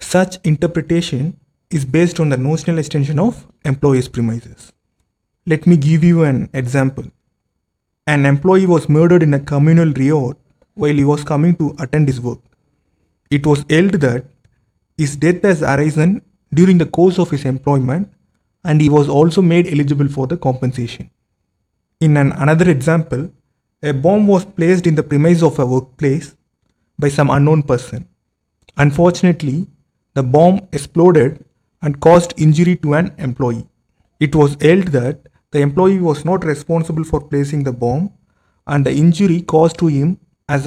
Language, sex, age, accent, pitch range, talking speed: English, male, 30-49, Indian, 135-165 Hz, 155 wpm